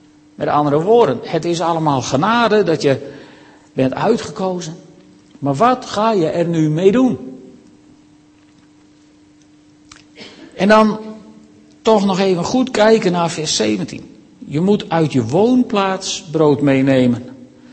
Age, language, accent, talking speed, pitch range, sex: 50-69, Dutch, Dutch, 120 wpm, 150-225 Hz, male